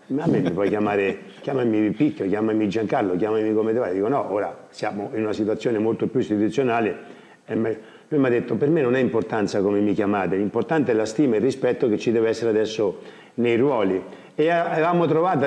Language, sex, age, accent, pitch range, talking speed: Italian, male, 50-69, native, 110-145 Hz, 205 wpm